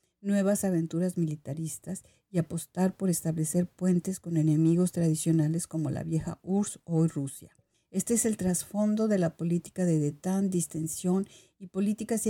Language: Spanish